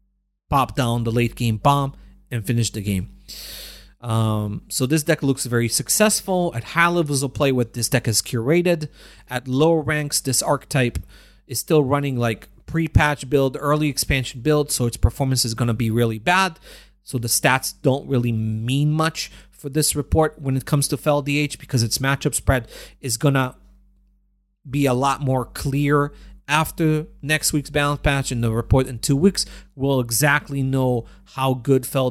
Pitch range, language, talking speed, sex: 125-155 Hz, English, 180 wpm, male